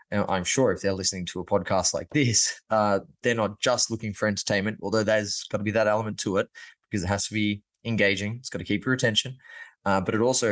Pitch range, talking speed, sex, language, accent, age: 100-120 Hz, 240 wpm, male, English, Australian, 20-39